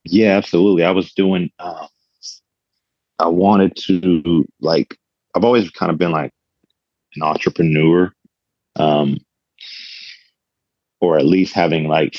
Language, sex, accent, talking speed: English, male, American, 120 wpm